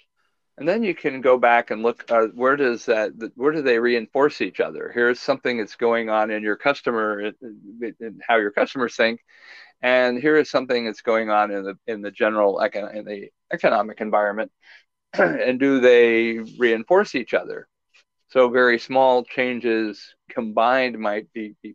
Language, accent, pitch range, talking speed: English, American, 115-130 Hz, 175 wpm